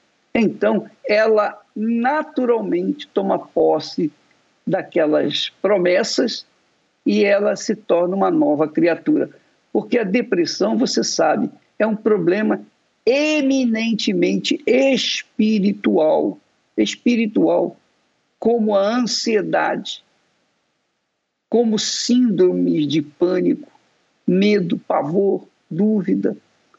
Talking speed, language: 80 wpm, Portuguese